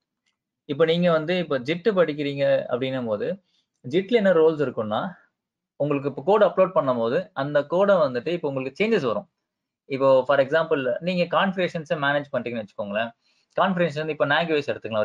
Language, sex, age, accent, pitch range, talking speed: Tamil, male, 20-39, native, 140-200 Hz, 150 wpm